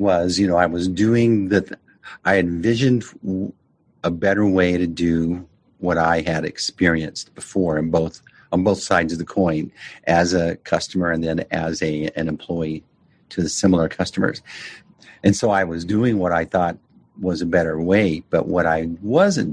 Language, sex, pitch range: English, male, 85-120 Hz